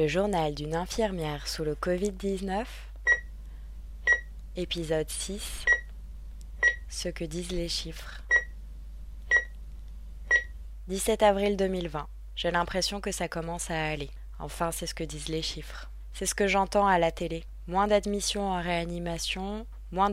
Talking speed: 130 wpm